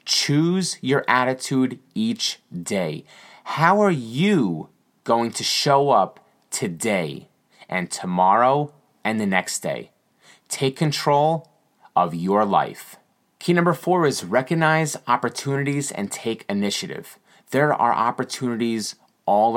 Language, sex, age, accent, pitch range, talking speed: English, male, 30-49, American, 115-145 Hz, 115 wpm